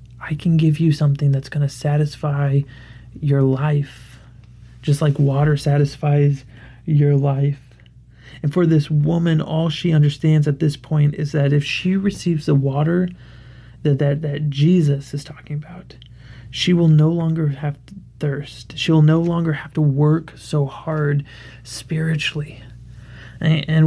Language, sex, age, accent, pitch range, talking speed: English, male, 30-49, American, 135-155 Hz, 145 wpm